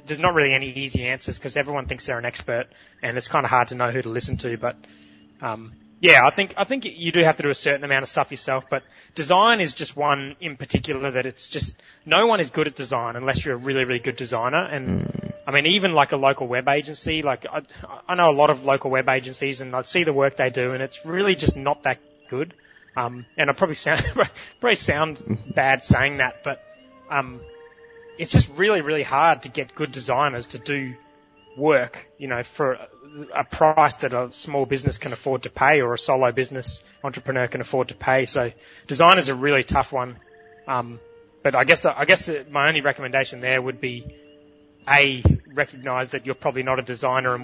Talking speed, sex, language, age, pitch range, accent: 215 wpm, male, English, 20-39, 125-145 Hz, Australian